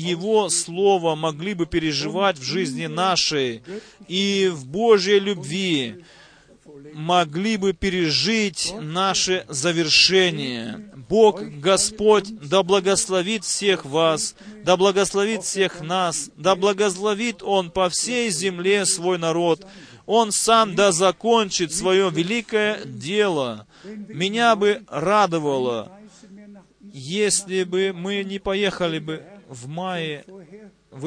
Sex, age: male, 30-49